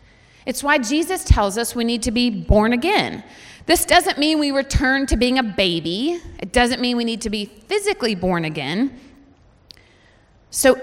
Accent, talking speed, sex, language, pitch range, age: American, 170 wpm, female, English, 215-295 Hz, 30-49